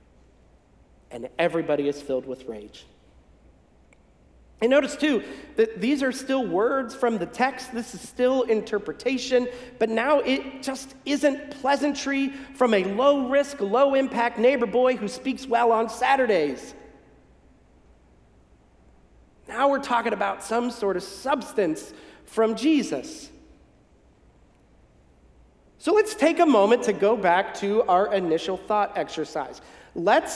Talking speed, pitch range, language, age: 125 wpm, 190-275 Hz, English, 40-59